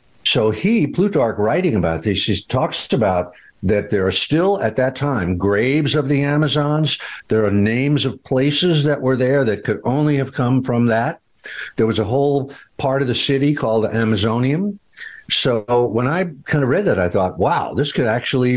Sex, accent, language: male, American, English